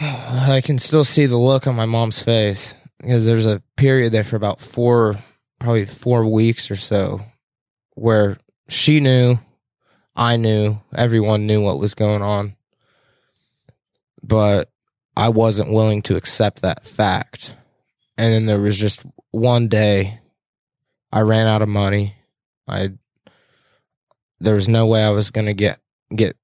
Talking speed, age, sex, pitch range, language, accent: 150 wpm, 20-39, male, 100-120 Hz, English, American